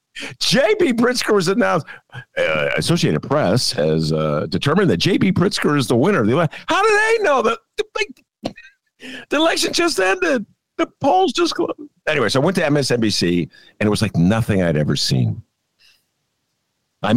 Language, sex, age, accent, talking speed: English, male, 50-69, American, 170 wpm